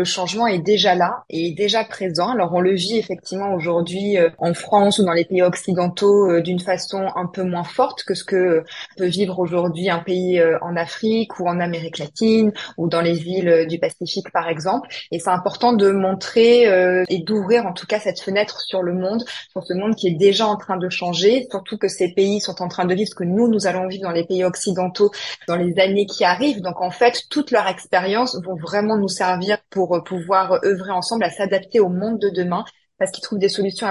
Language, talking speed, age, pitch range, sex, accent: French, 225 wpm, 20-39, 180-210 Hz, female, French